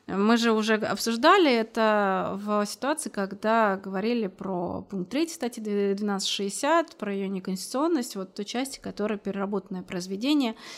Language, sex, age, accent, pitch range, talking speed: Russian, female, 30-49, native, 195-235 Hz, 120 wpm